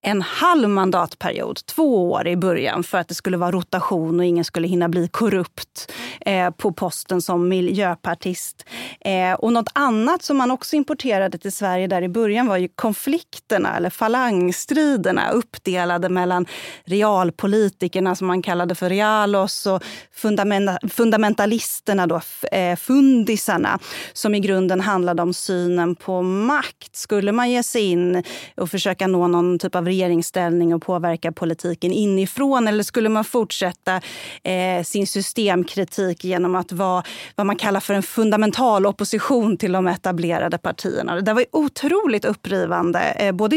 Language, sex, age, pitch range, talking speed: Swedish, female, 30-49, 180-220 Hz, 140 wpm